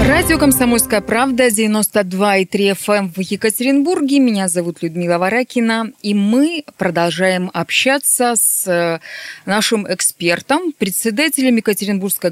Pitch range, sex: 175-225 Hz, female